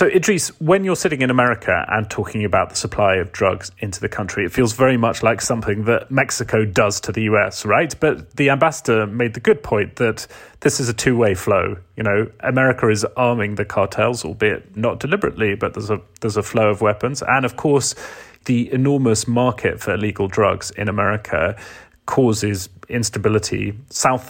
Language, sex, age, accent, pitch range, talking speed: English, male, 30-49, British, 105-125 Hz, 185 wpm